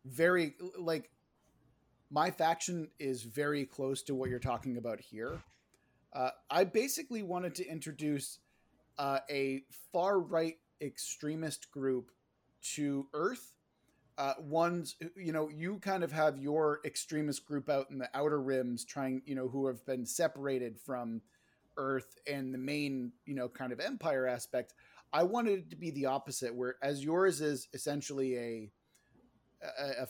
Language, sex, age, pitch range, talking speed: English, male, 30-49, 130-155 Hz, 150 wpm